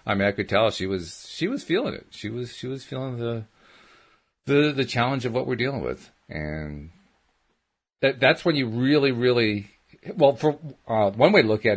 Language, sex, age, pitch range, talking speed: English, male, 40-59, 90-125 Hz, 205 wpm